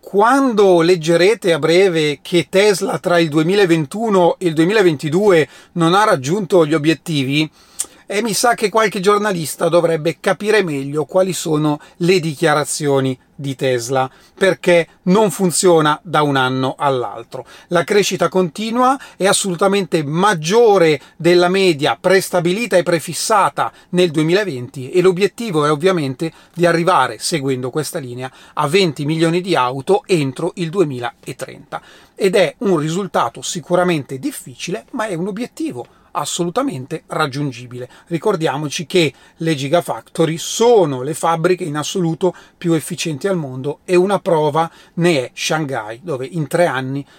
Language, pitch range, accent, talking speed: Italian, 150-190 Hz, native, 130 wpm